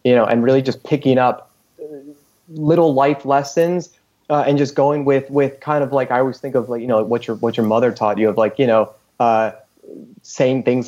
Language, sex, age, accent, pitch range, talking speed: English, male, 30-49, American, 110-130 Hz, 220 wpm